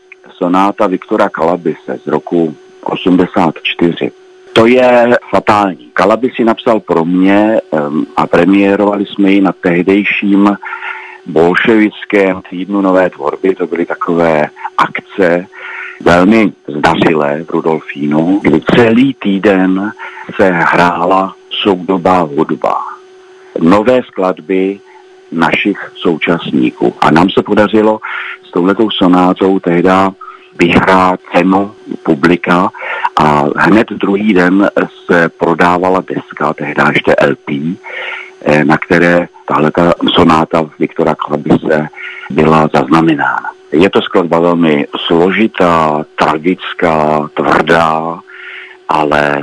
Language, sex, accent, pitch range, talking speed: Czech, male, native, 85-100 Hz, 95 wpm